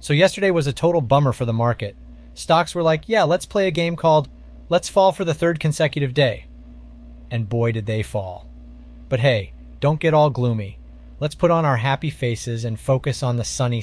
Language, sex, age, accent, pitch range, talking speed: English, male, 30-49, American, 110-155 Hz, 205 wpm